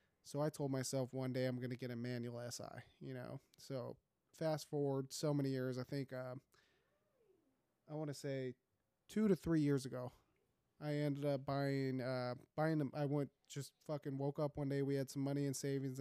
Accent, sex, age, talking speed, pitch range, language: American, male, 30-49, 200 wpm, 135-155 Hz, English